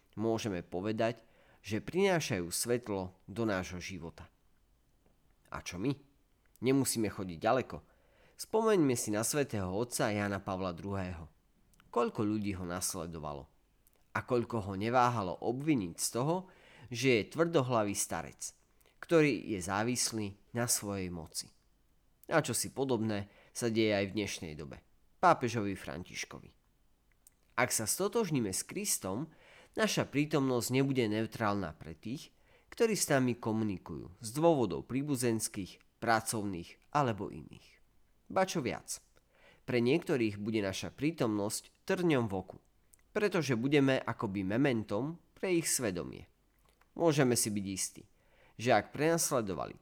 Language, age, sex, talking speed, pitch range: Slovak, 30-49, male, 120 wpm, 95-130 Hz